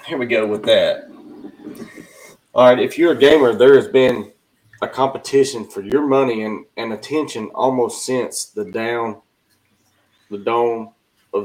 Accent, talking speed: American, 150 wpm